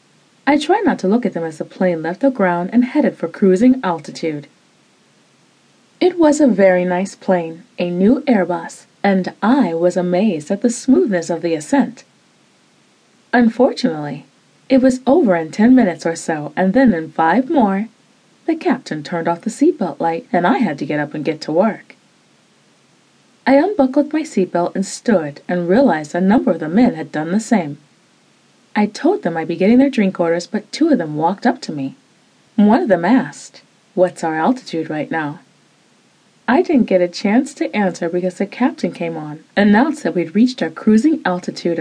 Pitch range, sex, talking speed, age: 170-255 Hz, female, 185 wpm, 30-49